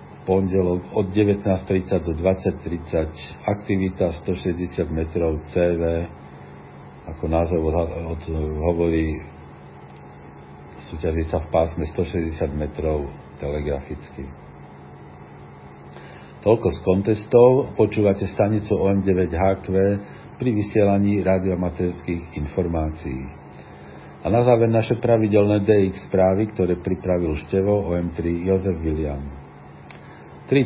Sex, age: male, 50-69